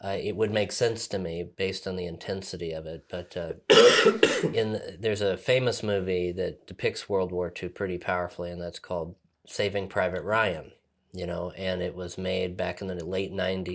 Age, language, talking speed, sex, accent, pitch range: 30-49, English, 200 wpm, male, American, 90-100 Hz